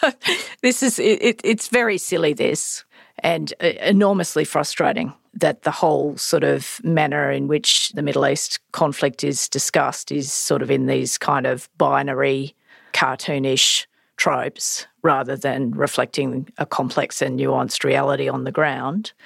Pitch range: 135-185 Hz